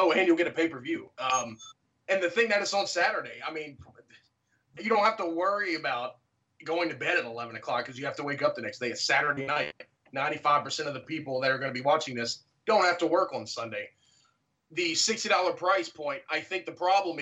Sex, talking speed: male, 225 wpm